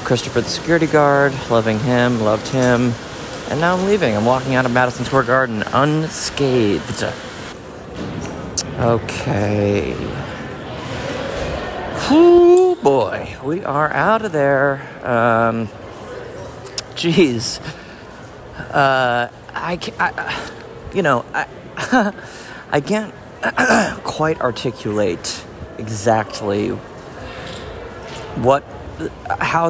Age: 40-59